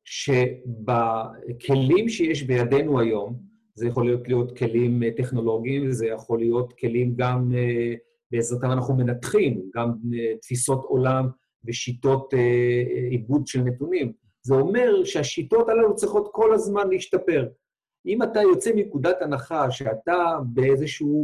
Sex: male